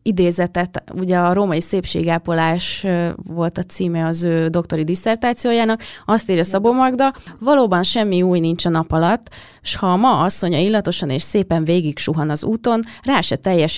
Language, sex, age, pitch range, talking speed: Hungarian, female, 20-39, 165-210 Hz, 165 wpm